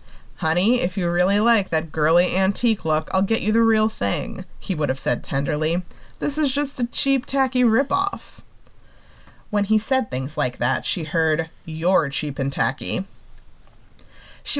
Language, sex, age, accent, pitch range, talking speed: English, female, 20-39, American, 150-215 Hz, 165 wpm